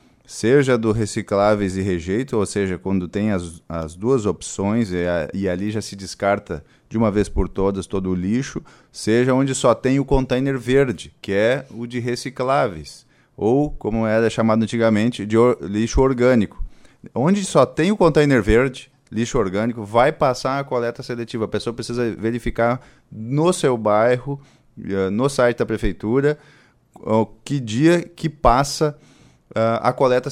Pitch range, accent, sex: 105-135 Hz, Brazilian, male